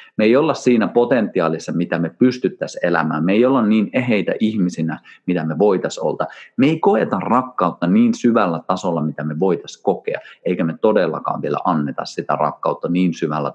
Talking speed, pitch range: 175 wpm, 85-110 Hz